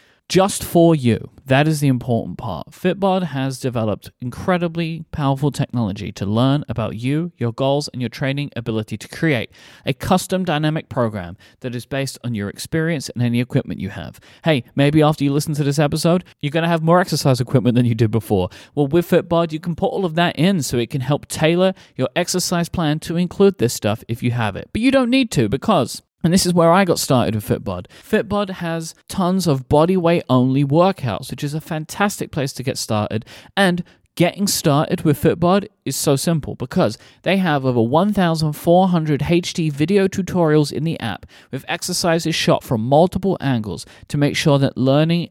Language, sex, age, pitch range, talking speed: English, male, 30-49, 120-165 Hz, 195 wpm